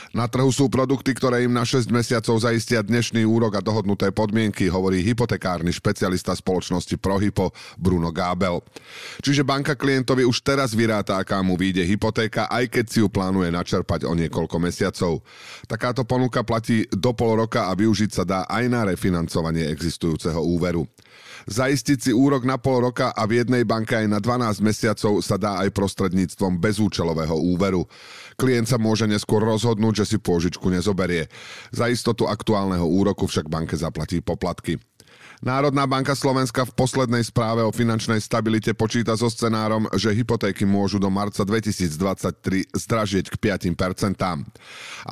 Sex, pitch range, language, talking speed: male, 95-120 Hz, Slovak, 150 wpm